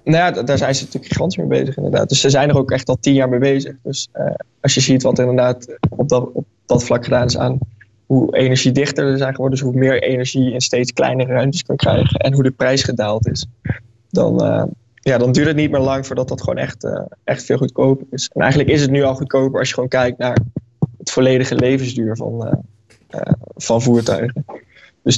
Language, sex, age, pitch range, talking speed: Dutch, male, 20-39, 125-135 Hz, 235 wpm